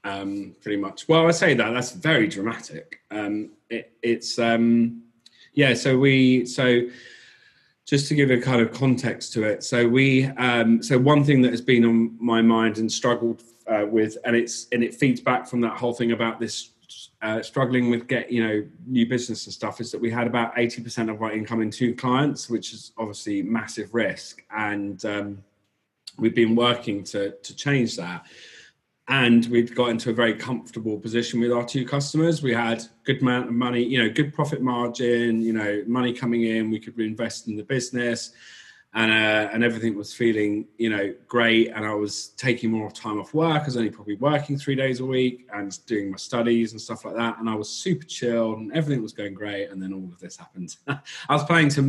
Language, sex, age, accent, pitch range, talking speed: English, male, 30-49, British, 110-125 Hz, 210 wpm